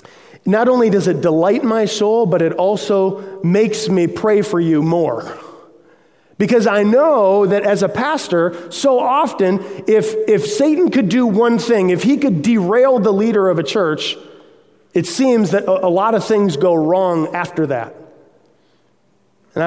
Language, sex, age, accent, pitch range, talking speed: English, male, 30-49, American, 165-215 Hz, 165 wpm